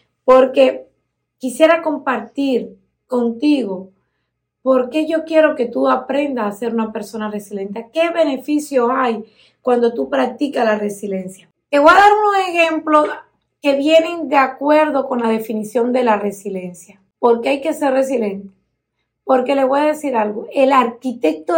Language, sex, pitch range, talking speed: Spanish, female, 220-300 Hz, 150 wpm